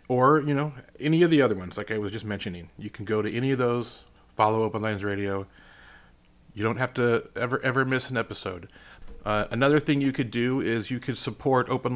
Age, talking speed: 30-49, 220 wpm